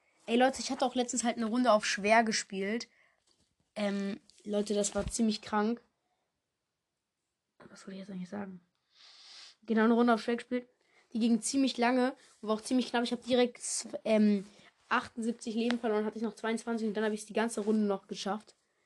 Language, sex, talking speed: German, female, 190 wpm